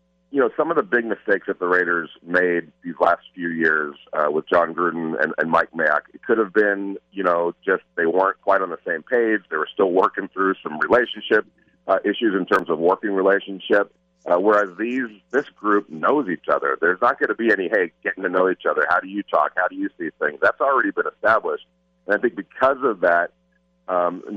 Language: English